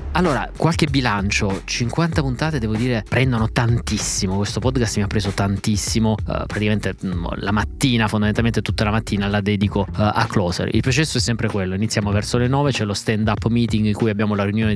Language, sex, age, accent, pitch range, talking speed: Italian, male, 20-39, native, 105-125 Hz, 185 wpm